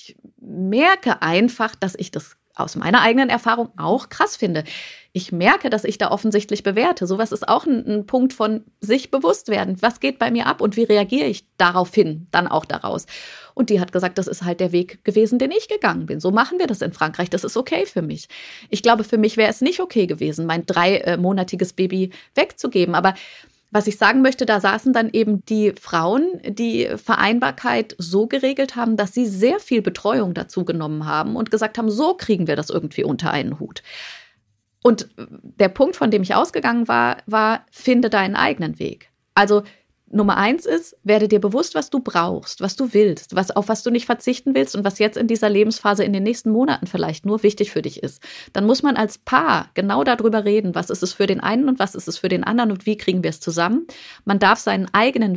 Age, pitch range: 30-49, 190-240 Hz